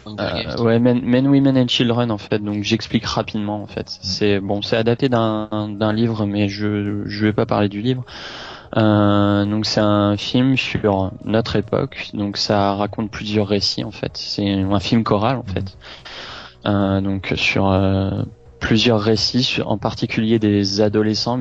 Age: 20-39